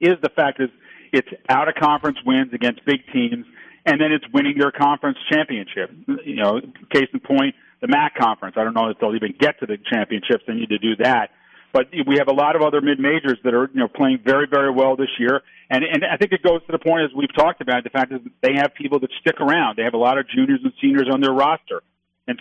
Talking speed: 250 wpm